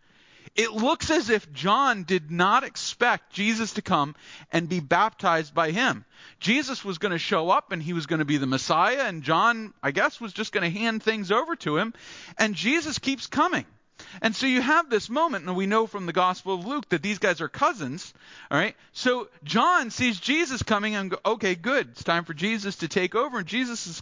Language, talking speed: English, 215 wpm